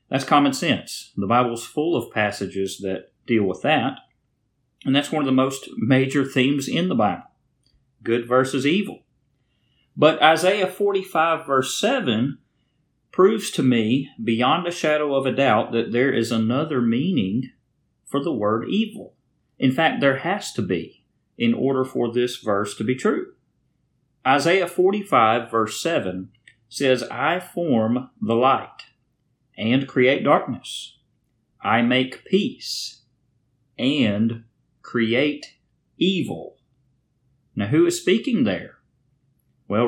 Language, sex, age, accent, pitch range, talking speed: English, male, 40-59, American, 115-140 Hz, 130 wpm